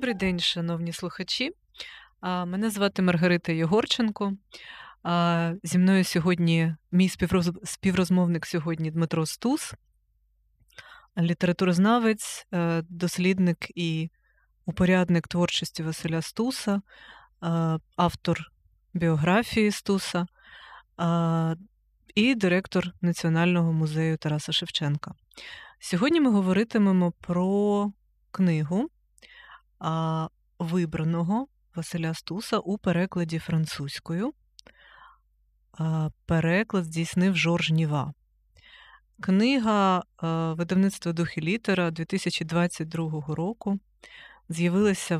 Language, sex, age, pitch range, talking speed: Ukrainian, female, 20-39, 165-195 Hz, 75 wpm